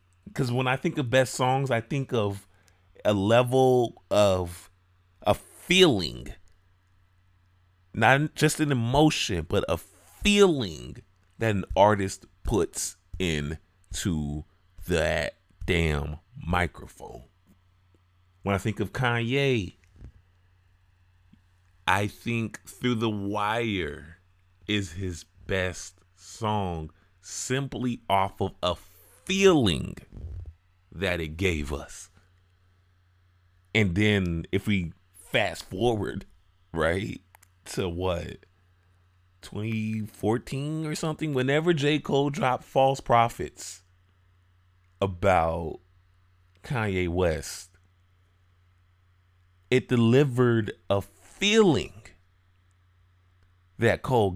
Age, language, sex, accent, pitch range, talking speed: 30-49, English, male, American, 90-110 Hz, 90 wpm